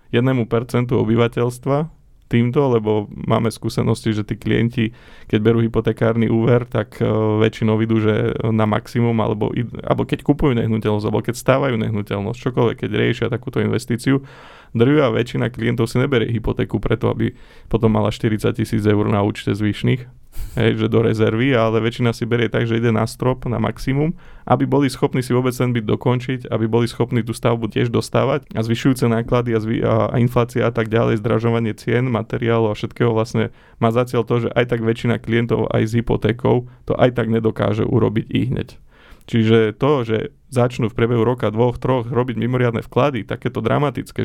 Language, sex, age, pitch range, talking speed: Slovak, male, 20-39, 110-125 Hz, 170 wpm